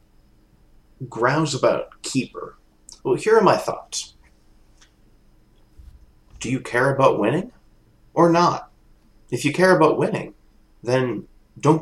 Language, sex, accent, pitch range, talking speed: English, male, American, 110-155 Hz, 110 wpm